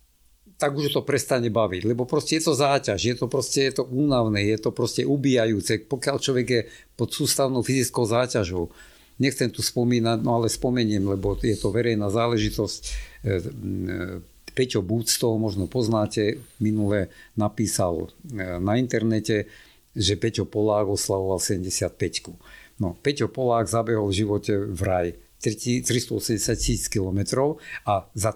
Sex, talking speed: male, 125 wpm